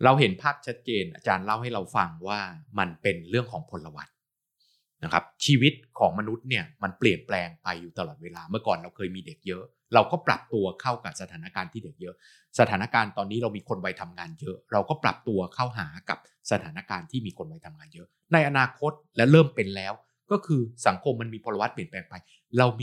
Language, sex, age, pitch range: Thai, male, 30-49, 100-145 Hz